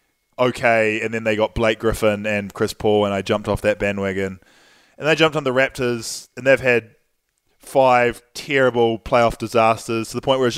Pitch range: 105-135 Hz